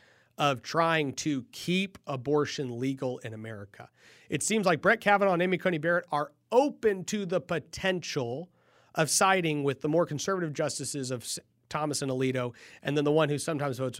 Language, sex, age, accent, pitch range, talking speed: English, male, 40-59, American, 120-170 Hz, 170 wpm